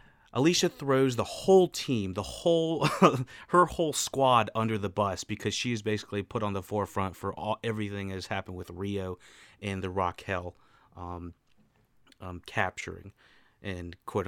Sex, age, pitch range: male, 30-49, 95-125 Hz